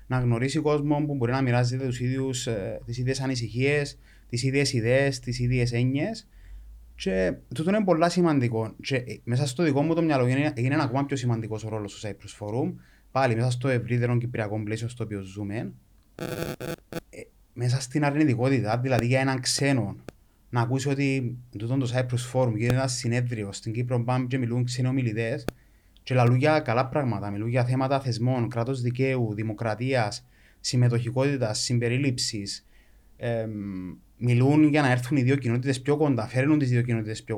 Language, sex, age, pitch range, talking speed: Greek, male, 20-39, 115-140 Hz, 155 wpm